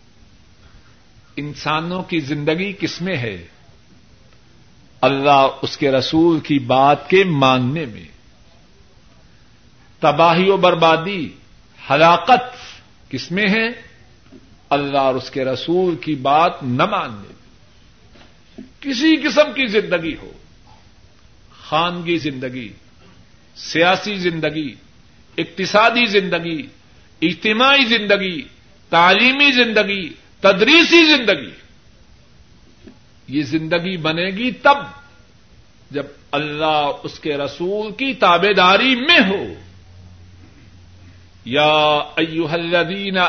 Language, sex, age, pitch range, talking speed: Urdu, male, 50-69, 130-195 Hz, 90 wpm